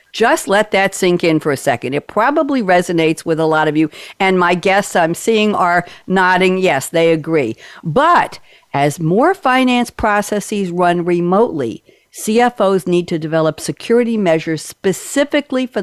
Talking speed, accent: 155 wpm, American